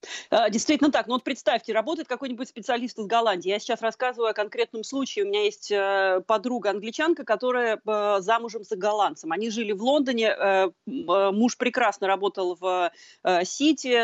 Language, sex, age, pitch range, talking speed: Russian, female, 30-49, 205-260 Hz, 145 wpm